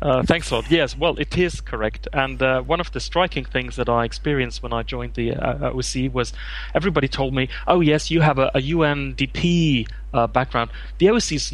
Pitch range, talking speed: 115-140 Hz, 215 wpm